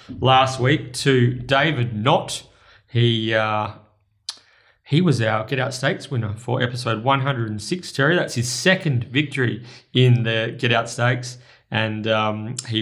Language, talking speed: English, 140 wpm